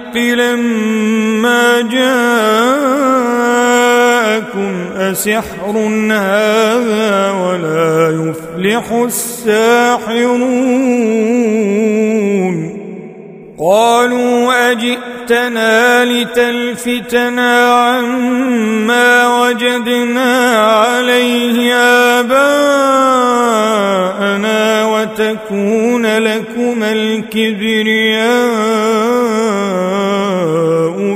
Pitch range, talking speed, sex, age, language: 200-245 Hz, 35 wpm, male, 40-59, Arabic